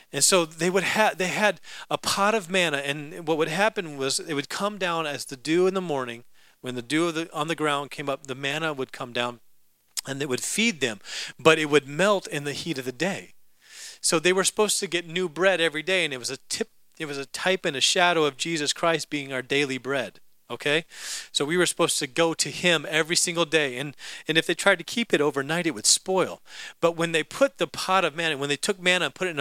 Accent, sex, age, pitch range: American, male, 40-59, 140-180 Hz